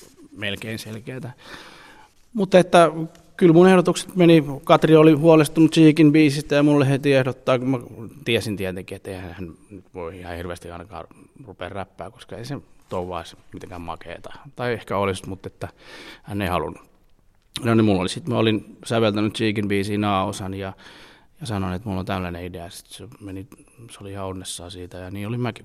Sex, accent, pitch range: male, native, 100-140 Hz